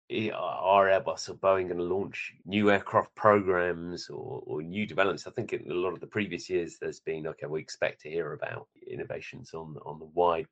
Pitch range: 80-120 Hz